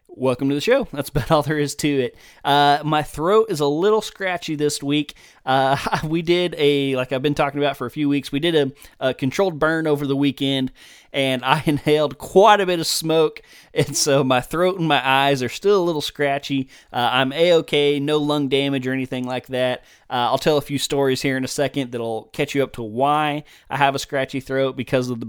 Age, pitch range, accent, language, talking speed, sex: 20-39, 130-150 Hz, American, English, 230 wpm, male